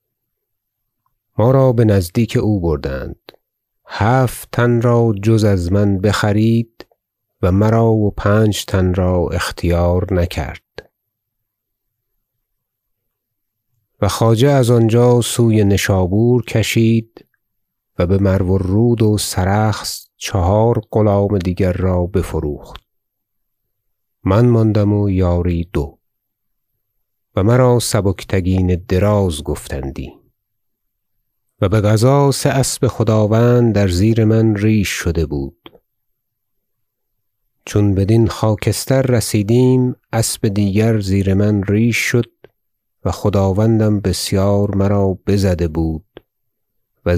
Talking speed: 100 wpm